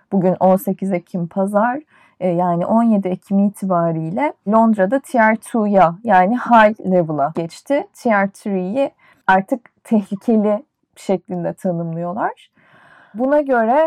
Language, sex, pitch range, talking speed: Turkish, female, 185-235 Hz, 90 wpm